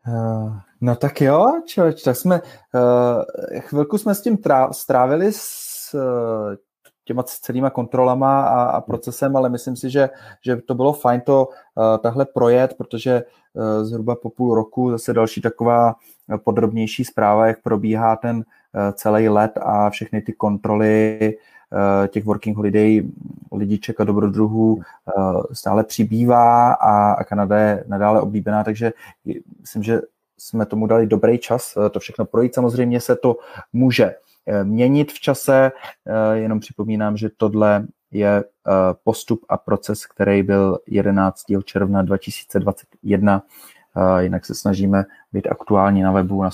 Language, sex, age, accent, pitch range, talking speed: Czech, male, 20-39, native, 105-125 Hz, 140 wpm